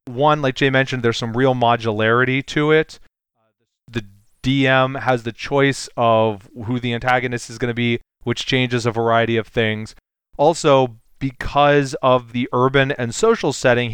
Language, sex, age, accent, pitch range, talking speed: English, male, 30-49, American, 110-130 Hz, 160 wpm